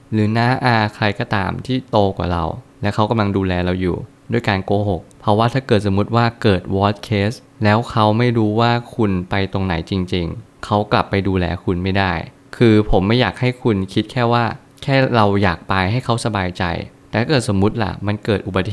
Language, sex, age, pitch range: Thai, male, 20-39, 95-115 Hz